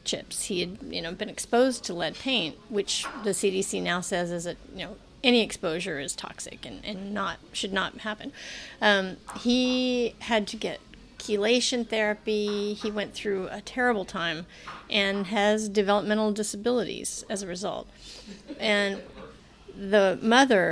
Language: English